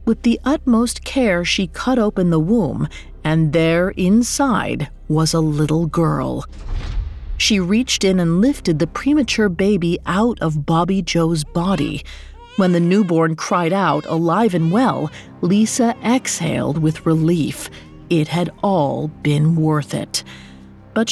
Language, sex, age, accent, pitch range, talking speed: English, female, 40-59, American, 155-220 Hz, 135 wpm